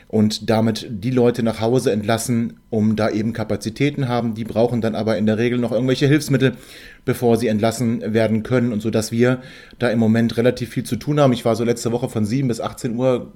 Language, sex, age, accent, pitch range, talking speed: German, male, 30-49, German, 110-130 Hz, 220 wpm